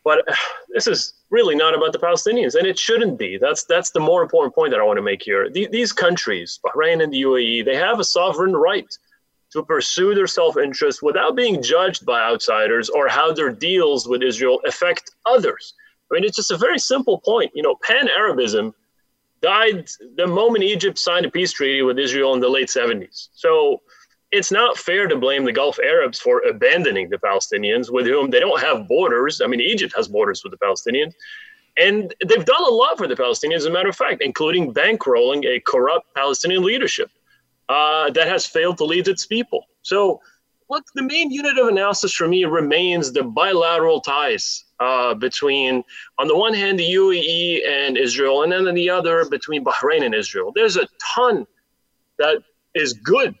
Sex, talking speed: male, 190 wpm